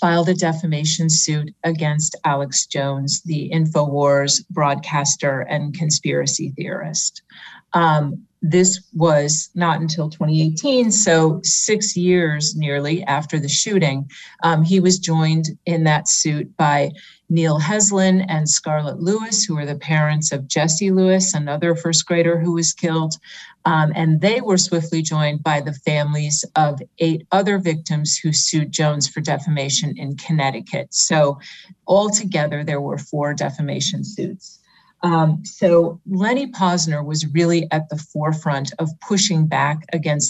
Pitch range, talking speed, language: 150-175 Hz, 135 wpm, English